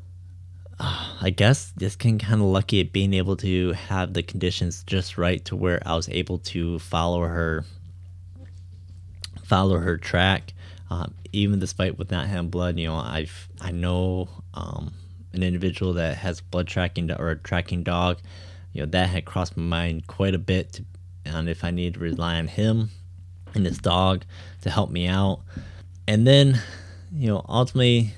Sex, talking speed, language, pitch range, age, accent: male, 170 wpm, English, 90-100 Hz, 20-39, American